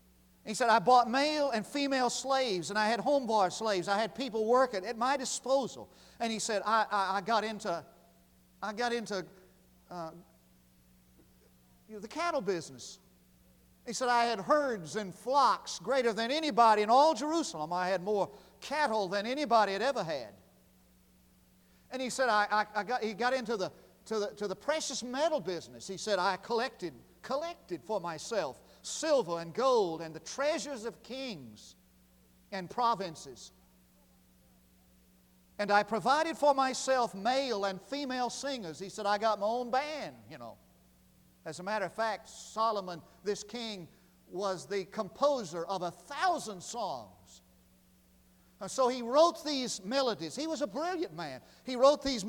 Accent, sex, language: American, male, English